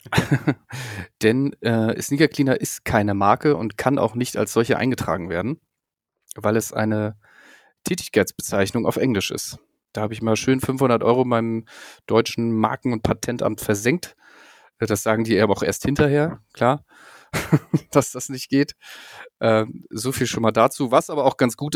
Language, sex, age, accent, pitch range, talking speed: German, male, 30-49, German, 110-135 Hz, 160 wpm